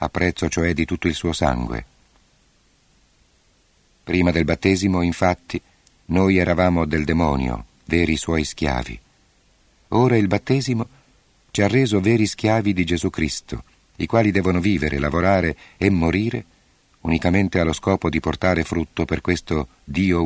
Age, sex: 50-69, male